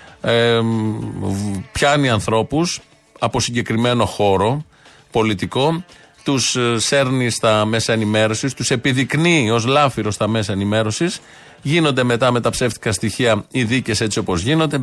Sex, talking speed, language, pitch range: male, 115 wpm, Greek, 115-140 Hz